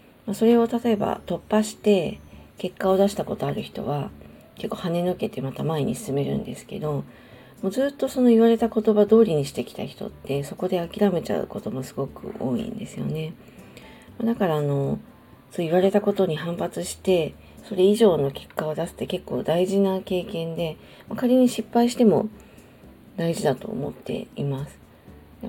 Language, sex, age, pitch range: Japanese, female, 40-59, 155-215 Hz